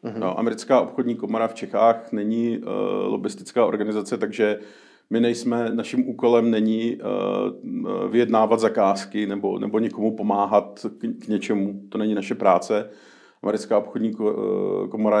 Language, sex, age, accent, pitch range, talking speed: Czech, male, 40-59, native, 105-115 Hz, 140 wpm